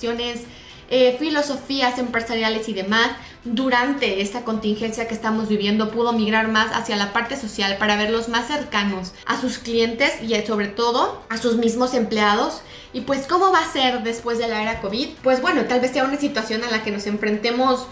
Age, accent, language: 20-39, Mexican, Spanish